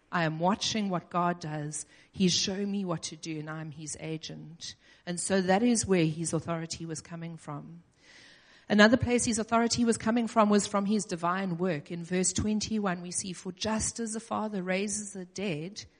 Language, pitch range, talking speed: English, 170-225 Hz, 190 wpm